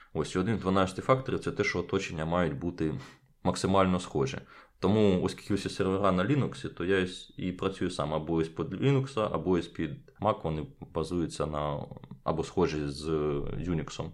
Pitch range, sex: 90-120 Hz, male